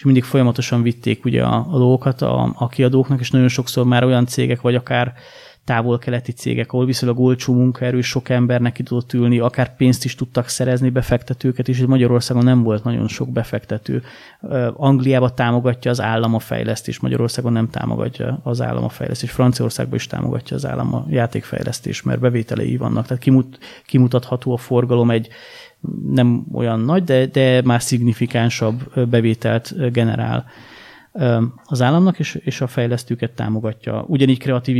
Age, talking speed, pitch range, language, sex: 30-49, 145 wpm, 115-125 Hz, Hungarian, male